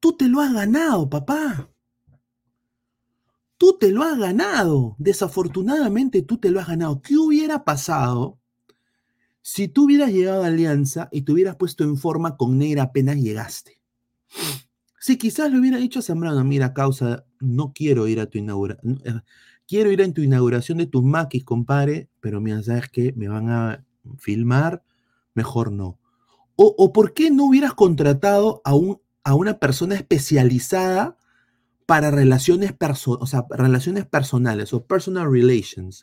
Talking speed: 150 wpm